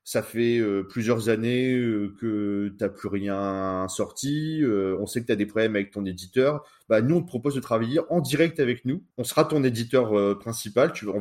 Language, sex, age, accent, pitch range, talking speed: French, male, 30-49, French, 105-140 Hz, 195 wpm